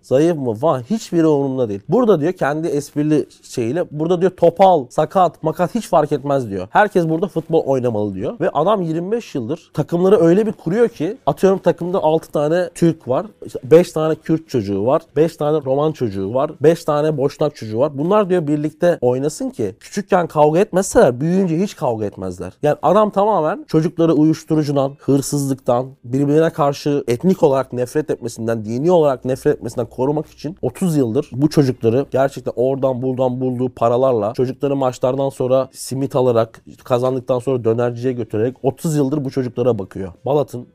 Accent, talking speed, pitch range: native, 160 wpm, 120-160 Hz